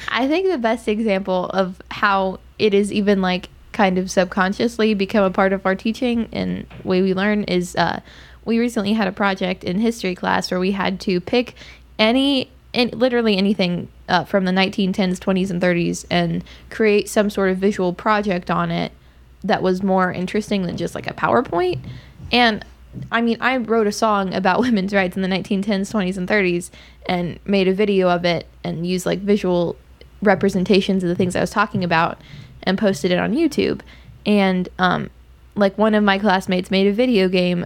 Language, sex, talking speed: English, female, 190 wpm